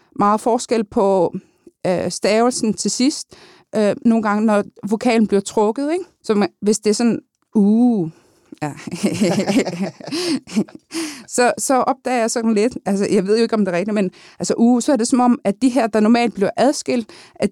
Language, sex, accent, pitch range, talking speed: Danish, female, native, 195-240 Hz, 190 wpm